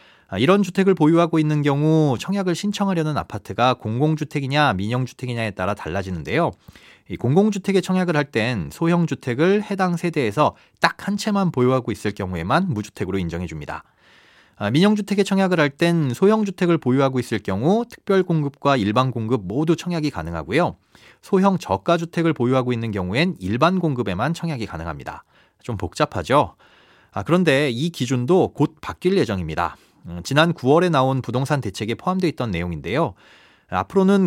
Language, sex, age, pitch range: Korean, male, 30-49, 110-175 Hz